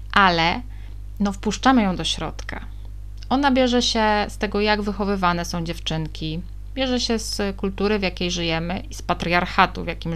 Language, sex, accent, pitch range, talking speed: Polish, female, native, 165-210 Hz, 160 wpm